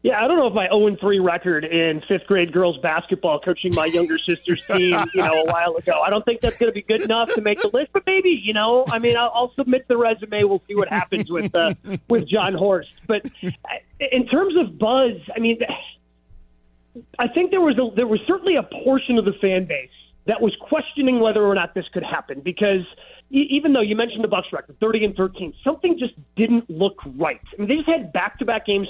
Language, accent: English, American